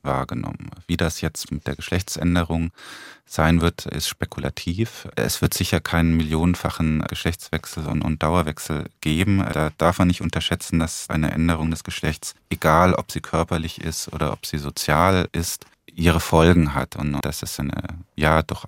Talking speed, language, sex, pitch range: 155 wpm, German, male, 75-90 Hz